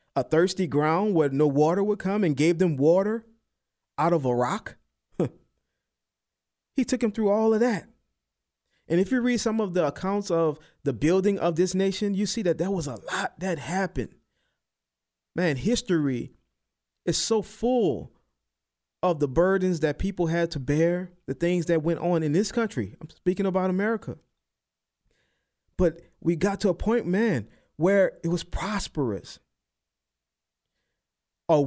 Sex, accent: male, American